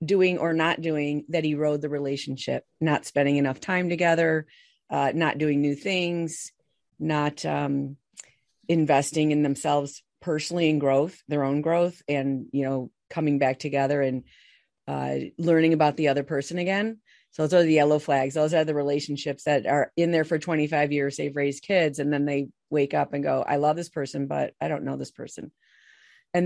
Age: 40-59